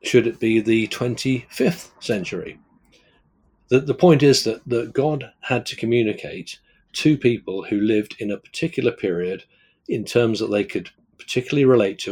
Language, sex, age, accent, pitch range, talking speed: English, male, 40-59, British, 100-120 Hz, 160 wpm